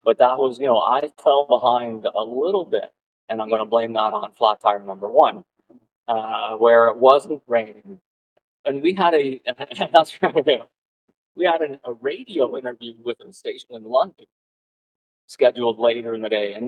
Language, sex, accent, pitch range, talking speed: English, male, American, 115-175 Hz, 170 wpm